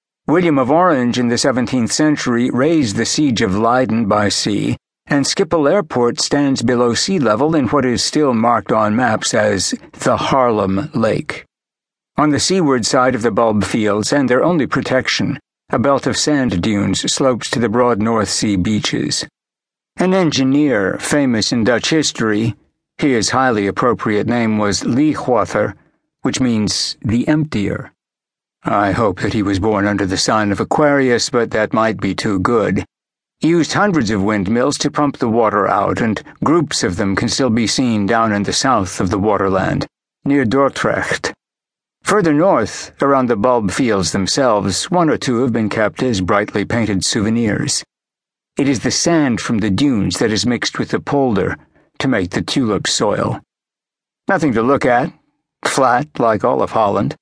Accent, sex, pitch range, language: American, male, 105-140 Hz, English